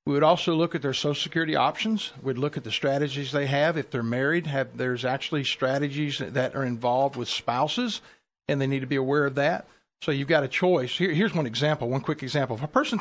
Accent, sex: American, male